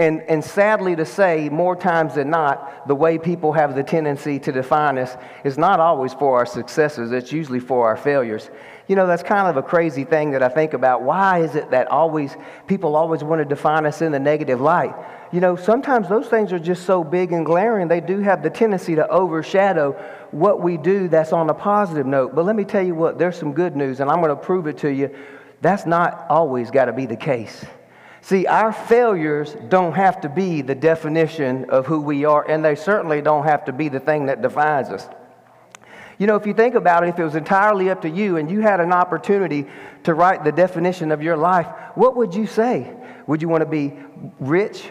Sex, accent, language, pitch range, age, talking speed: male, American, English, 145-180 Hz, 40-59, 225 wpm